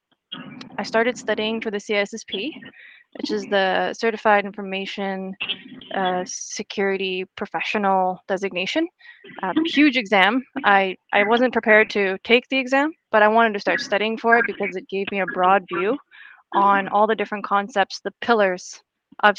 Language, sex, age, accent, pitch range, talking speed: English, female, 20-39, American, 195-235 Hz, 150 wpm